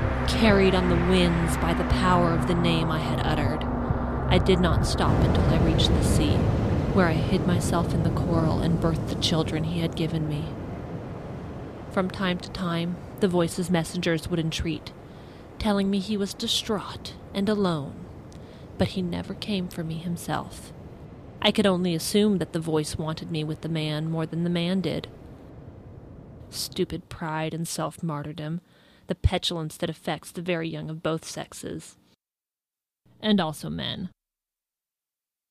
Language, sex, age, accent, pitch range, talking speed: English, female, 30-49, American, 155-180 Hz, 160 wpm